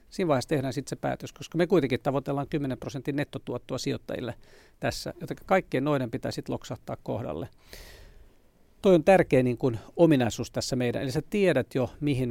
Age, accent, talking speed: 50-69, native, 170 wpm